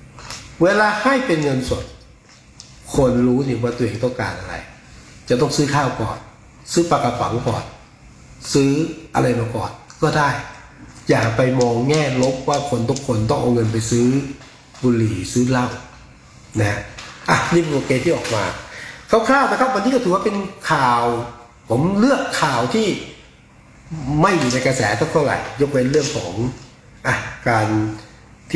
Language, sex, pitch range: Thai, male, 120-145 Hz